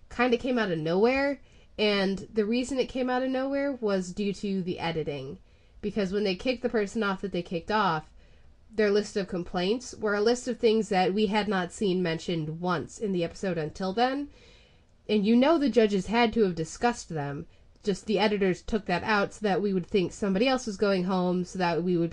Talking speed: 220 wpm